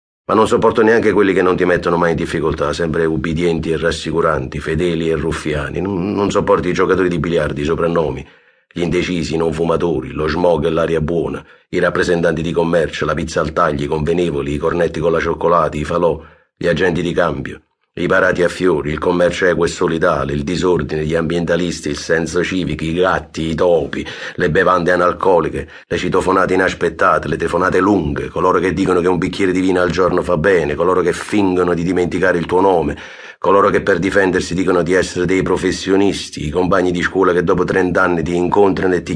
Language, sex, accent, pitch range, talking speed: Italian, male, native, 85-95 Hz, 195 wpm